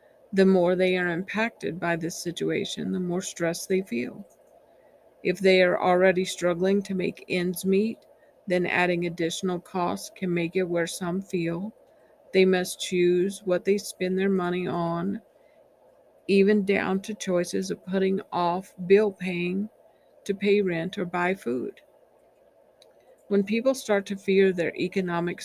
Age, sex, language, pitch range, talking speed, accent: 50-69, female, English, 175-200 Hz, 150 wpm, American